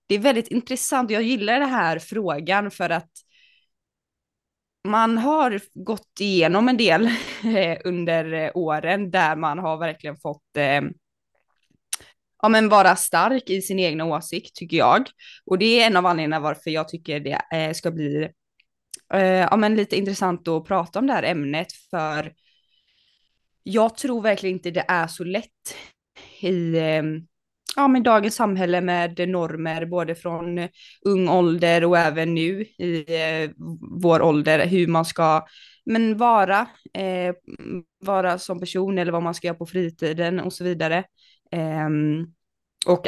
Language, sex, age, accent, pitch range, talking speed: Swedish, female, 20-39, native, 165-205 Hz, 140 wpm